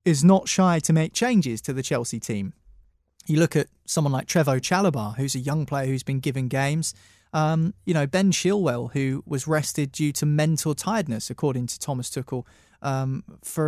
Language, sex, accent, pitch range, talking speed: English, male, British, 130-165 Hz, 190 wpm